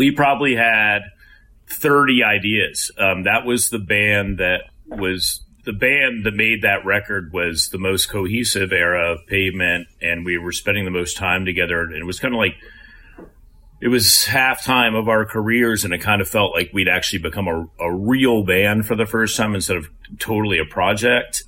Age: 30-49